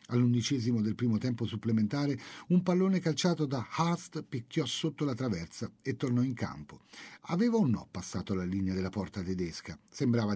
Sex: male